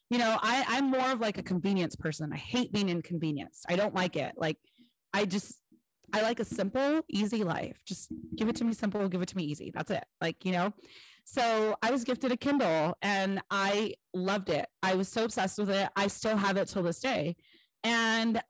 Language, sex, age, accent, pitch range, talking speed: English, female, 30-49, American, 170-215 Hz, 215 wpm